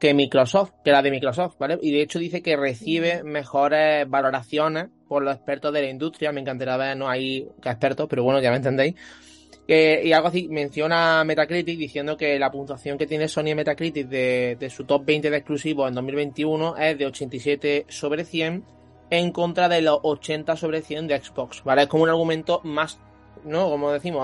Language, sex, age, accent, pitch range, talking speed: Spanish, male, 20-39, Spanish, 130-155 Hz, 195 wpm